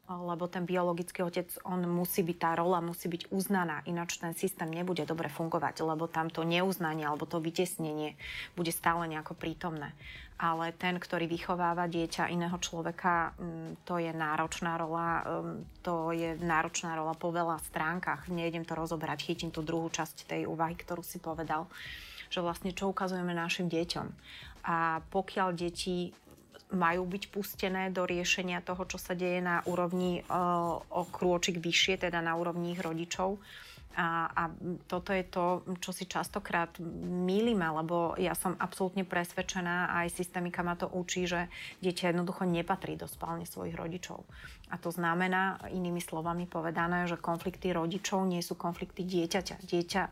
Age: 30-49